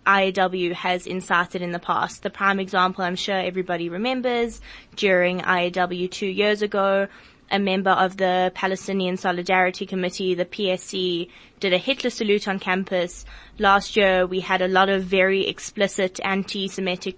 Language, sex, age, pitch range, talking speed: English, female, 20-39, 185-205 Hz, 150 wpm